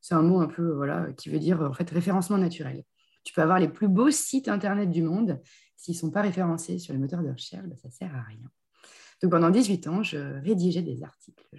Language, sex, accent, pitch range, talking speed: French, female, French, 155-205 Hz, 245 wpm